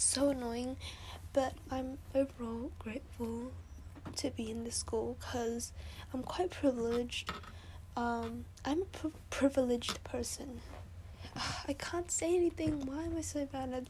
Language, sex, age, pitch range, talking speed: English, female, 10-29, 220-260 Hz, 130 wpm